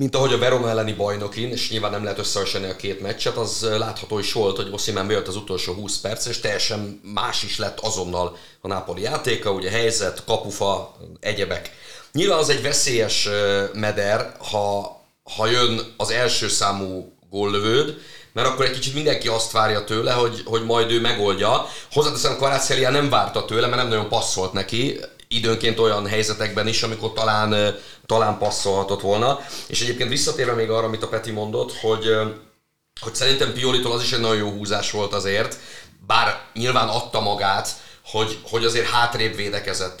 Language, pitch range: Hungarian, 100-115 Hz